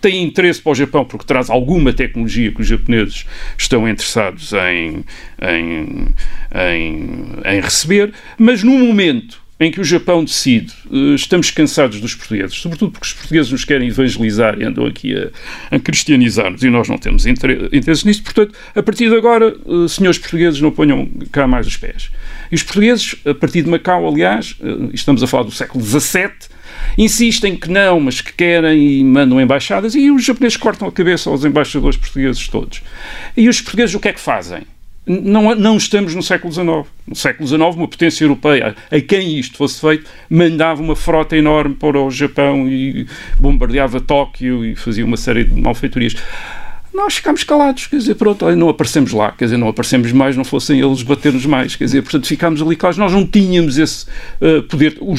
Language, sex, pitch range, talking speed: Portuguese, male, 135-180 Hz, 180 wpm